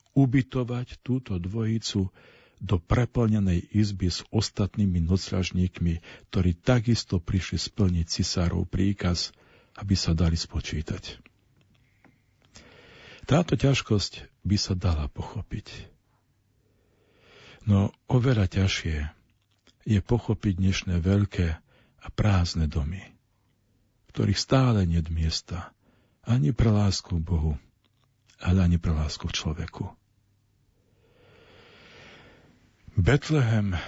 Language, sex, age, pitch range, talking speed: Slovak, male, 50-69, 90-110 Hz, 90 wpm